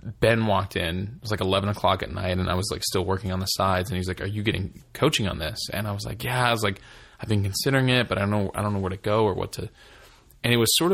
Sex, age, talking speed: male, 20-39, 315 wpm